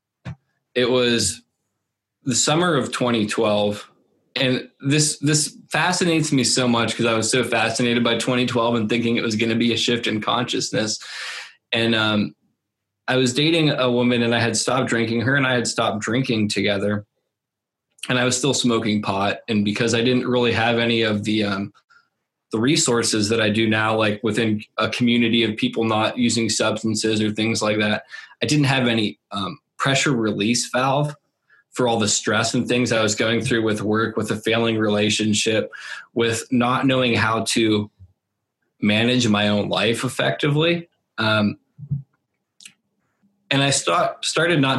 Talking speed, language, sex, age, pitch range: 165 wpm, English, male, 20-39, 110-125 Hz